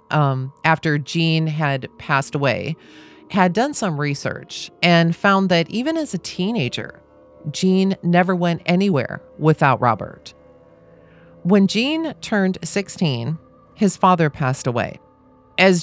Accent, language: American, English